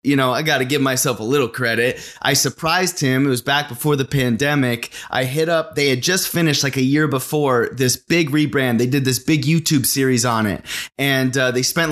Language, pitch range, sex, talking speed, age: English, 120-145 Hz, male, 225 wpm, 30-49